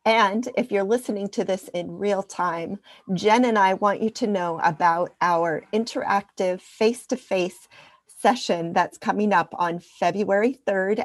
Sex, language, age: female, English, 40-59